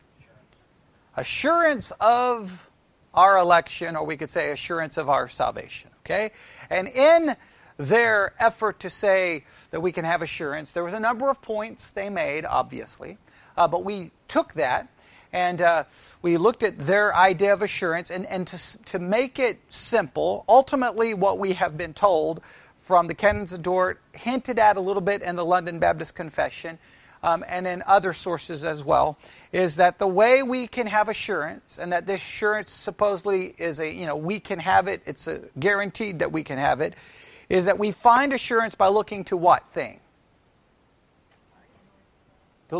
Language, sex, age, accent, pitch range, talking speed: English, male, 40-59, American, 170-215 Hz, 170 wpm